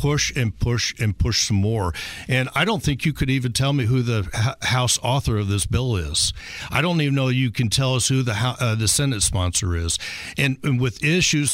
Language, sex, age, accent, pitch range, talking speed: English, male, 60-79, American, 110-145 Hz, 235 wpm